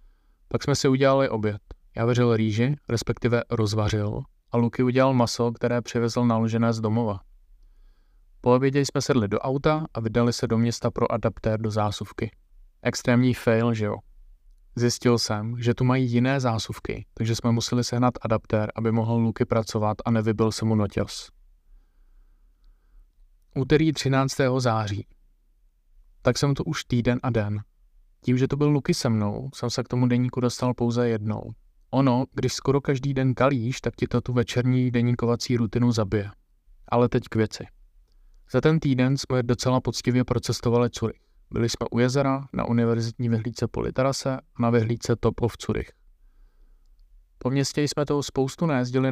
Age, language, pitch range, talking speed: 20-39, Czech, 110-125 Hz, 155 wpm